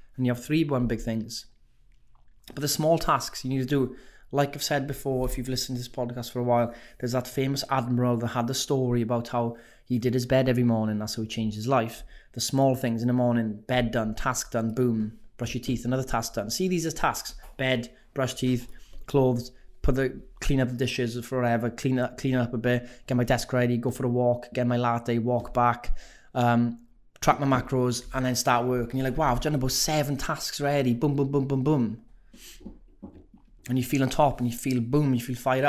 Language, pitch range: English, 115-130 Hz